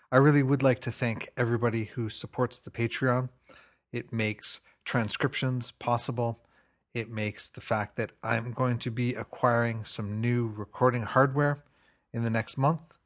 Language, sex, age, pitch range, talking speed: English, male, 40-59, 105-130 Hz, 150 wpm